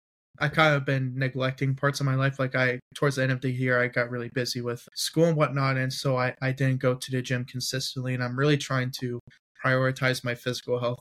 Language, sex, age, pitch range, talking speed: English, male, 20-39, 125-135 Hz, 240 wpm